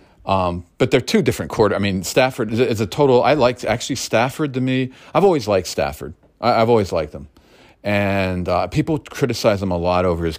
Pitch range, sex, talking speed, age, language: 95-125 Hz, male, 200 wpm, 40-59, English